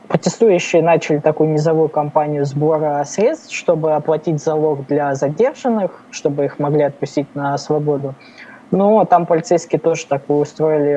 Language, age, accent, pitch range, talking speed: Russian, 20-39, native, 140-165 Hz, 130 wpm